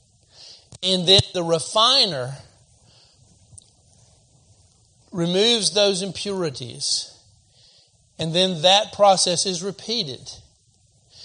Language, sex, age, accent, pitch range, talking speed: English, male, 50-69, American, 120-180 Hz, 70 wpm